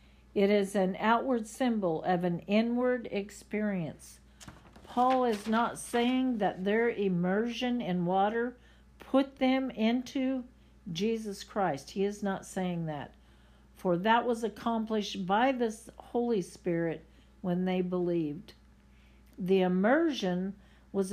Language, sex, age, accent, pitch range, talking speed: English, female, 60-79, American, 175-230 Hz, 120 wpm